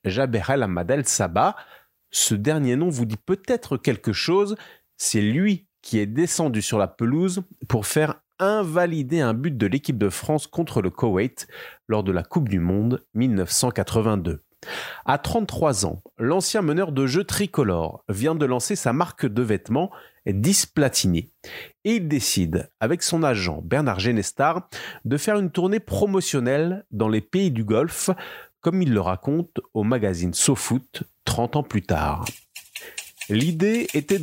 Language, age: French, 30-49